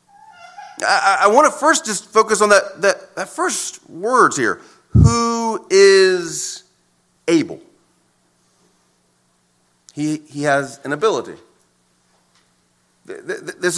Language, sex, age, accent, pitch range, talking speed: English, male, 40-59, American, 125-185 Hz, 95 wpm